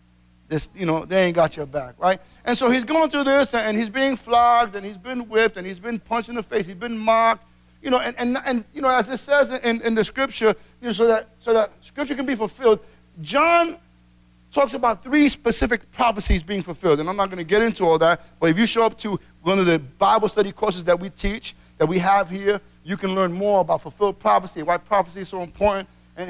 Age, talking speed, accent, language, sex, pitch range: 50-69, 240 wpm, American, English, male, 165-230 Hz